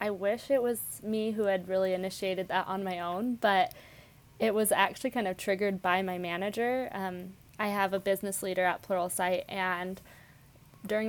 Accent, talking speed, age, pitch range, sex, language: American, 180 wpm, 20-39, 185-215 Hz, female, English